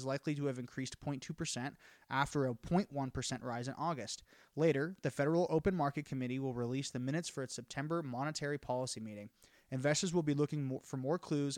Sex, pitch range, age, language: male, 125-150 Hz, 20-39, English